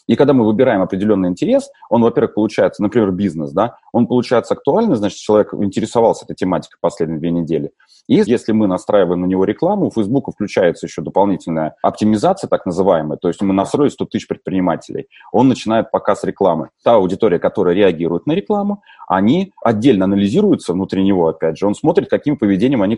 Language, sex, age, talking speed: Russian, male, 30-49, 175 wpm